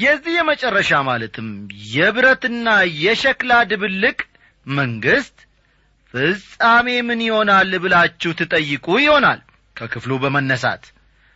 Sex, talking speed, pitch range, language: male, 80 wpm, 155-205 Hz, Amharic